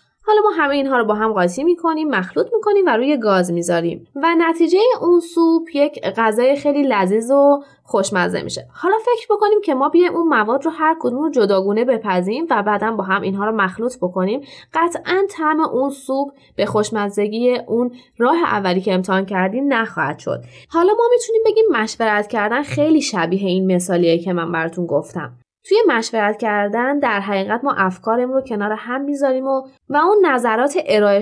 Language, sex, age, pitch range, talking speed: Persian, female, 20-39, 205-310 Hz, 175 wpm